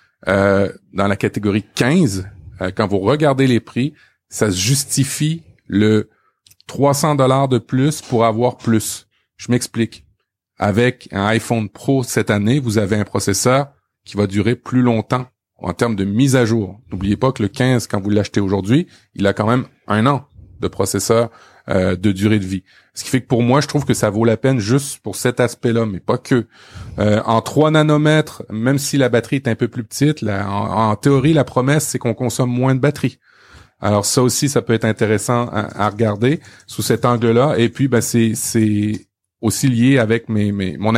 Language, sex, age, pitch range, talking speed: French, male, 30-49, 105-125 Hz, 190 wpm